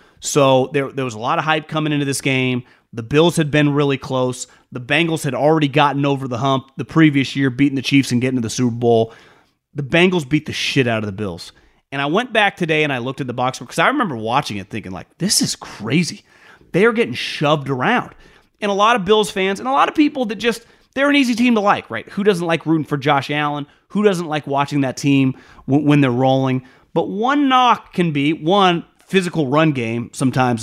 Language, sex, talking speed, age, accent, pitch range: English, male, 235 wpm, 30-49, American, 135-185 Hz